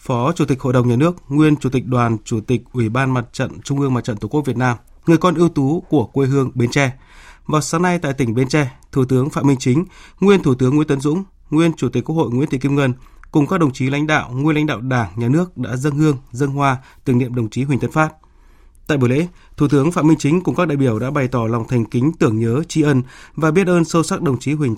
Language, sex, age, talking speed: Vietnamese, male, 20-39, 280 wpm